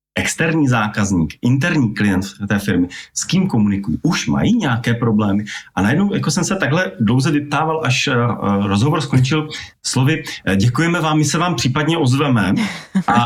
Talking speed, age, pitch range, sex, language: 150 wpm, 40-59, 110-140 Hz, male, Slovak